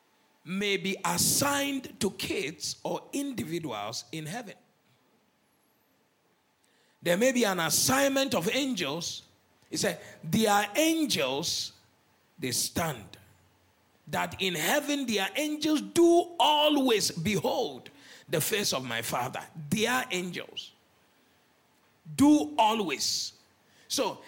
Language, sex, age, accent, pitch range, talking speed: English, male, 50-69, Nigerian, 205-340 Hz, 105 wpm